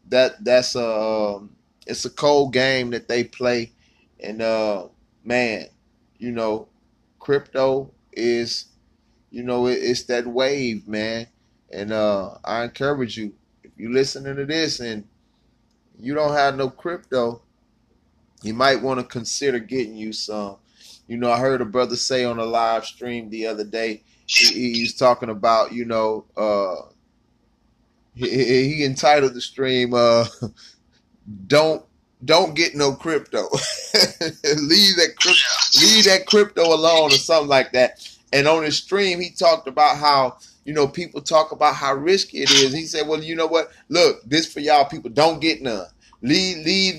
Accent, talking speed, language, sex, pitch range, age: American, 155 wpm, English, male, 115-150 Hz, 20-39